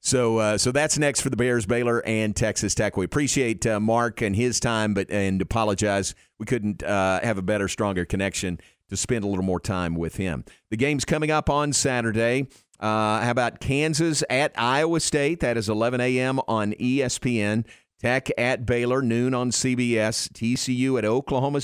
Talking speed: 185 wpm